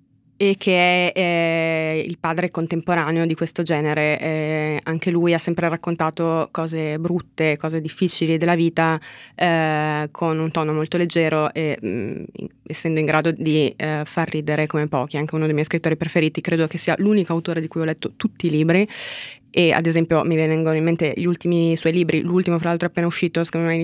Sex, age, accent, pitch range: female, 20-39, native, 155-170 Hz